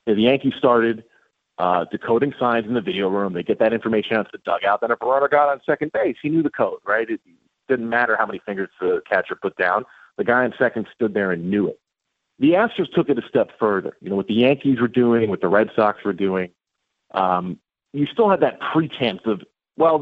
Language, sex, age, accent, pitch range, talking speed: English, male, 40-59, American, 100-155 Hz, 230 wpm